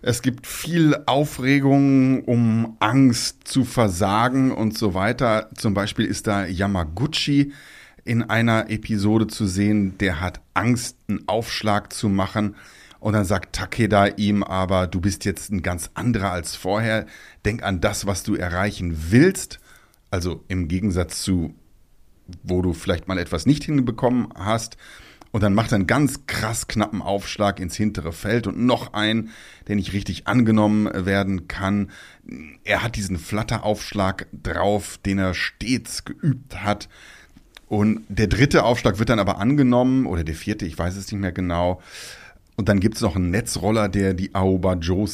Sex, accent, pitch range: male, German, 95-120 Hz